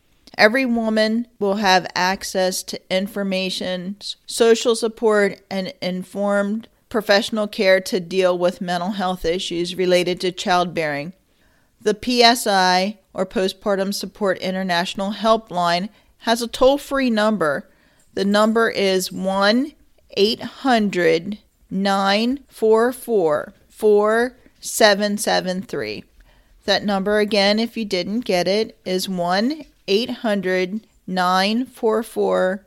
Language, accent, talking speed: English, American, 90 wpm